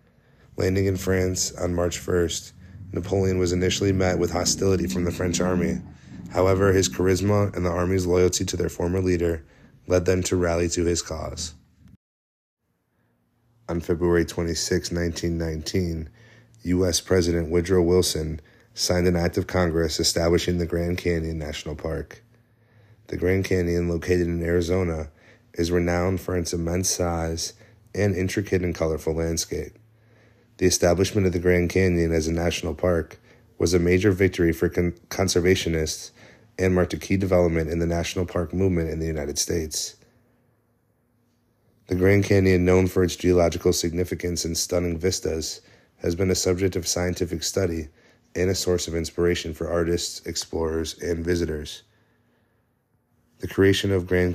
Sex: male